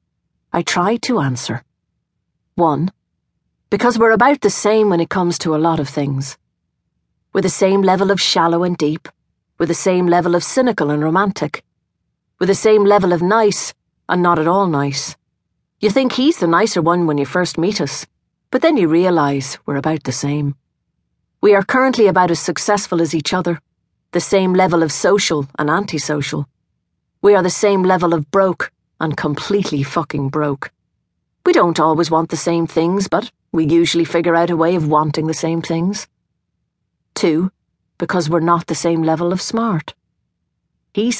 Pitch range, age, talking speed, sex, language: 155-195 Hz, 40-59, 175 wpm, female, English